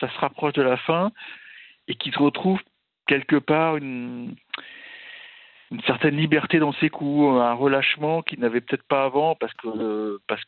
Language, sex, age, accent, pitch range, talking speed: French, male, 50-69, French, 105-150 Hz, 160 wpm